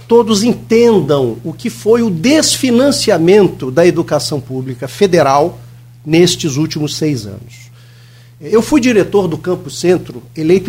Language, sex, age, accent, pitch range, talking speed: Portuguese, male, 50-69, Brazilian, 120-205 Hz, 125 wpm